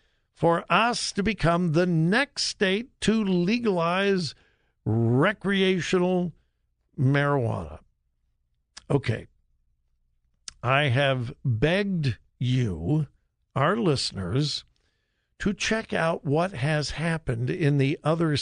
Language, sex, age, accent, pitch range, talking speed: English, male, 60-79, American, 130-185 Hz, 90 wpm